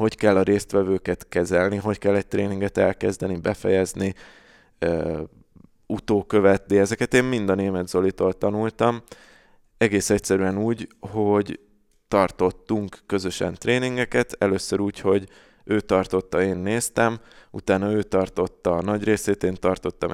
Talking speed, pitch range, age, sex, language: 125 wpm, 95-110 Hz, 20-39, male, Hungarian